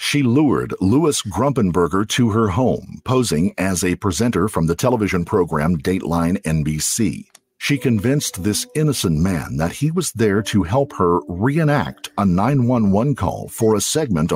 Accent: American